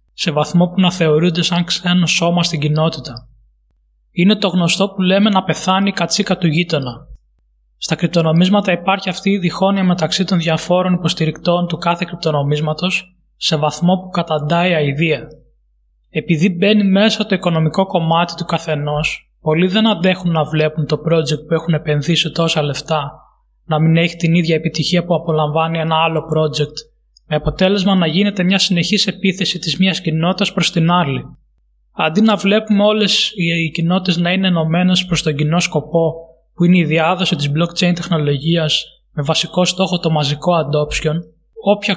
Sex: male